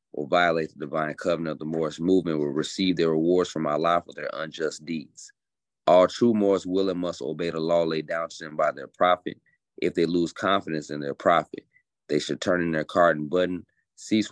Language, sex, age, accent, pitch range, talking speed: English, male, 30-49, American, 80-90 Hz, 215 wpm